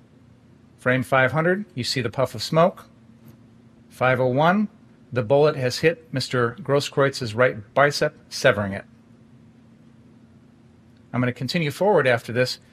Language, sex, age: English, male, 40-59